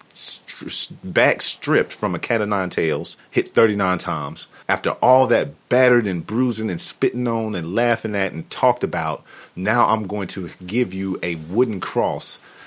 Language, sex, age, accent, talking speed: English, male, 40-59, American, 165 wpm